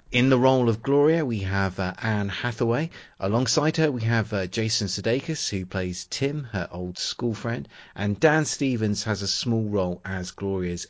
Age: 30-49